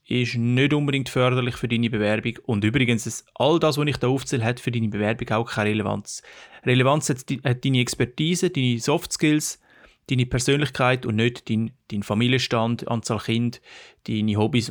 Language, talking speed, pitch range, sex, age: German, 165 wpm, 110-130 Hz, male, 30-49